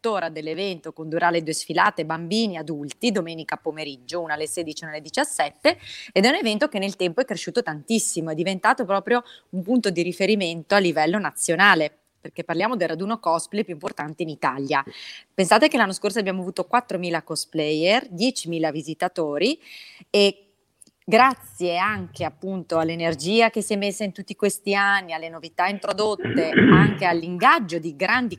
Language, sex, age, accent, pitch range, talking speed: Italian, female, 30-49, native, 160-210 Hz, 160 wpm